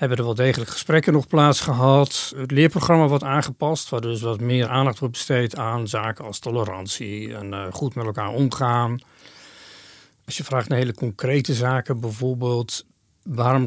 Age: 40-59